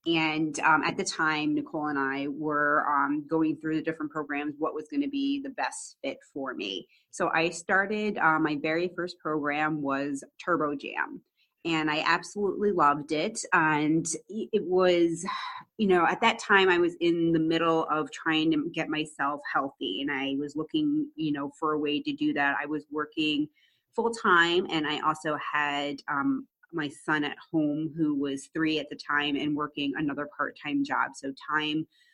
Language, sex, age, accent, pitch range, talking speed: English, female, 30-49, American, 150-185 Hz, 185 wpm